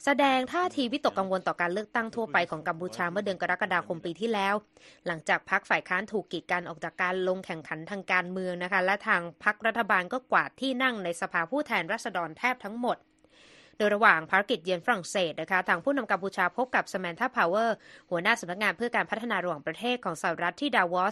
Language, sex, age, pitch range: Thai, female, 20-39, 180-240 Hz